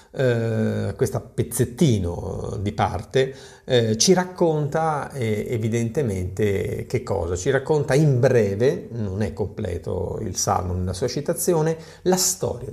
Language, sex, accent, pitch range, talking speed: Italian, male, native, 100-145 Hz, 115 wpm